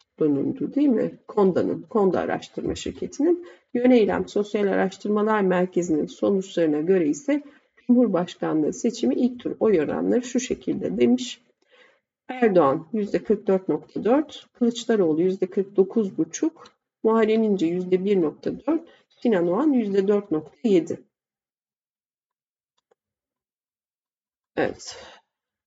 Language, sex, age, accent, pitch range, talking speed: Turkish, female, 50-69, native, 185-250 Hz, 85 wpm